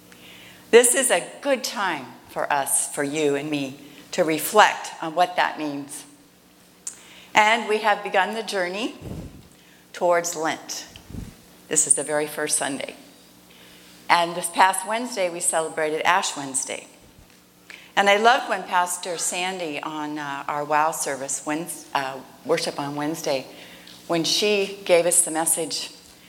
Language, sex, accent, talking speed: English, female, American, 135 wpm